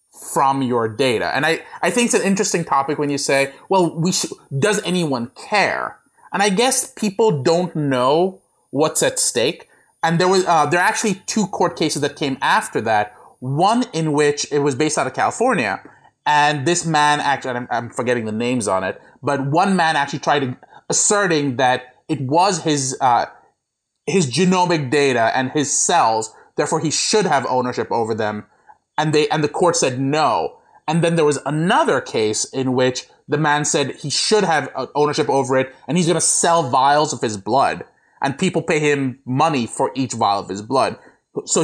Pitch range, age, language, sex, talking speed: 135-180 Hz, 30-49, English, male, 190 wpm